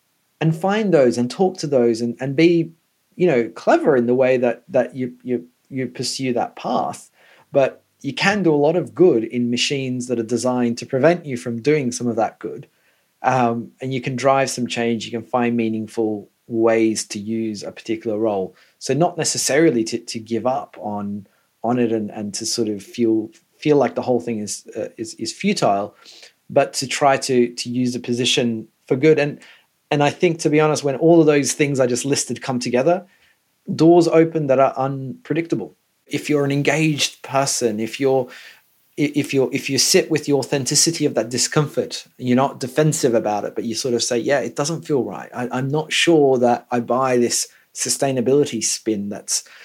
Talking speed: 200 wpm